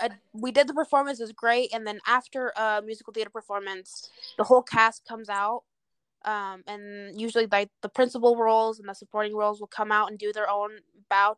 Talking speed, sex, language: 205 wpm, female, English